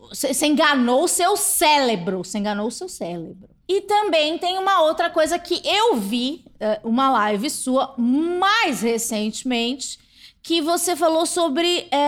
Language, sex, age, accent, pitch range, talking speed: Portuguese, female, 20-39, Brazilian, 215-290 Hz, 140 wpm